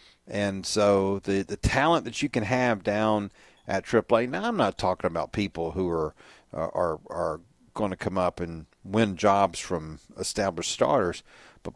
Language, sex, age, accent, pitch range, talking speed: English, male, 50-69, American, 90-110 Hz, 170 wpm